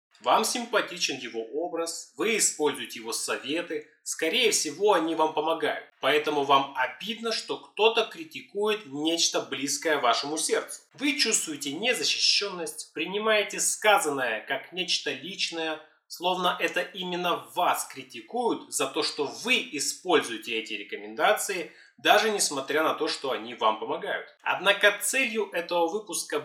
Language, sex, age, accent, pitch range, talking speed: Russian, male, 20-39, native, 155-225 Hz, 125 wpm